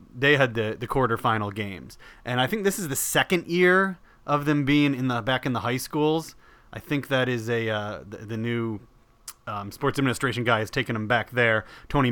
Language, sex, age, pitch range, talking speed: English, male, 30-49, 120-155 Hz, 215 wpm